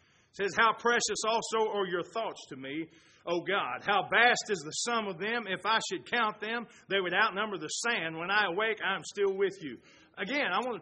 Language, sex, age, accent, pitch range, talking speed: English, male, 40-59, American, 185-235 Hz, 220 wpm